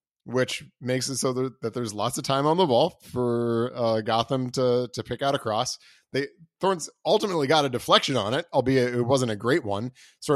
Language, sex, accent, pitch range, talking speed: English, male, American, 125-170 Hz, 215 wpm